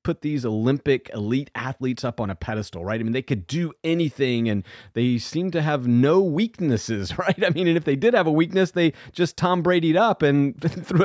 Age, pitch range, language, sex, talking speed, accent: 40-59, 120-155 Hz, English, male, 215 wpm, American